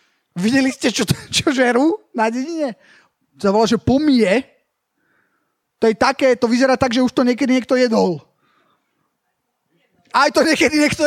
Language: Slovak